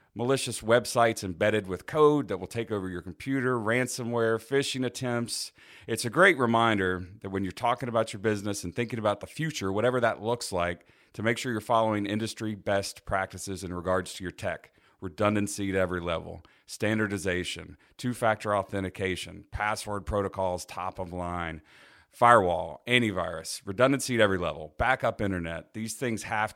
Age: 40-59